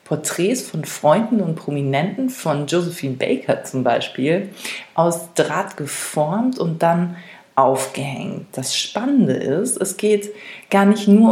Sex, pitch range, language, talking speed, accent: female, 160-205 Hz, German, 125 wpm, German